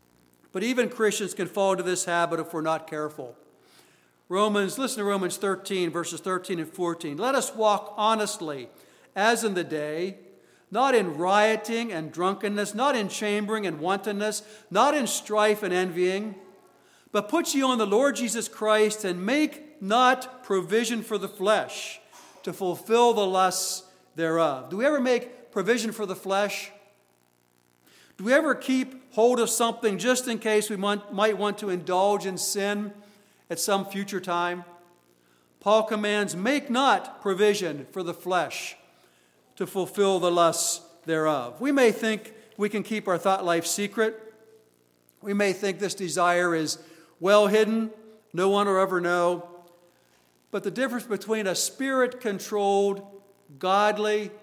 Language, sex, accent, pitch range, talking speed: English, male, American, 175-220 Hz, 150 wpm